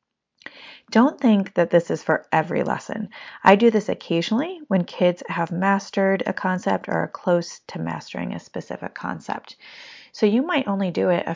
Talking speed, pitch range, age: 175 wpm, 170-200 Hz, 30-49